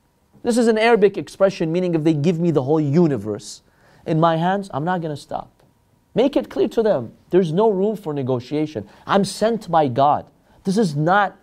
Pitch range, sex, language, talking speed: 135-205 Hz, male, English, 200 wpm